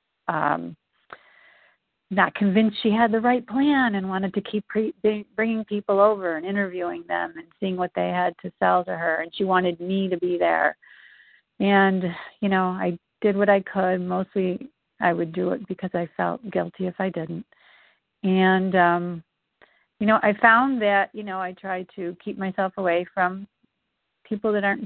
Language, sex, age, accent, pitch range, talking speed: English, female, 50-69, American, 175-215 Hz, 175 wpm